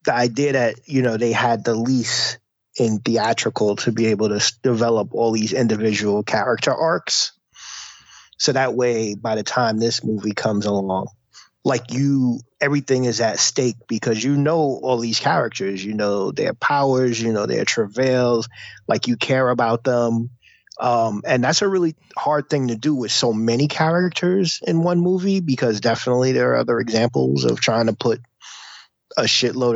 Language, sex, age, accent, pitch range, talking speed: English, male, 30-49, American, 110-130 Hz, 170 wpm